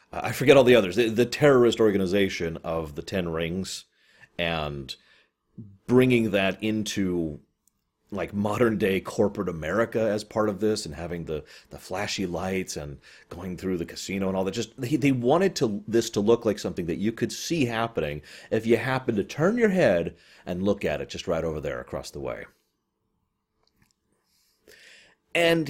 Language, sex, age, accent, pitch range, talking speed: English, male, 30-49, American, 85-120 Hz, 170 wpm